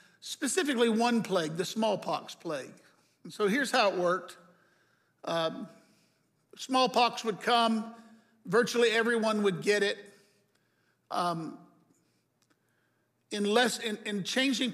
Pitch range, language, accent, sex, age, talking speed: 180-225 Hz, English, American, male, 60-79, 110 wpm